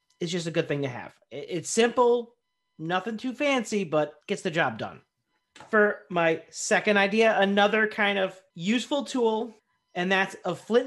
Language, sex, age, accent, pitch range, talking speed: English, male, 40-59, American, 160-220 Hz, 165 wpm